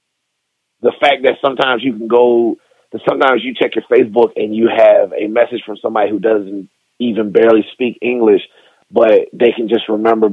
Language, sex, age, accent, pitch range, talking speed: English, male, 30-49, American, 105-140 Hz, 180 wpm